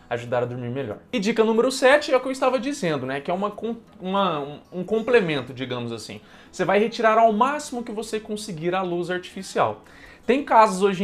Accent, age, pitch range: Brazilian, 20-39, 145-210 Hz